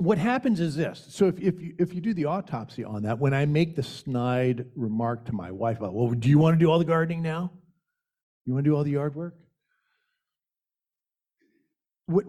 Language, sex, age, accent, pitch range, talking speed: English, male, 50-69, American, 135-190 Hz, 215 wpm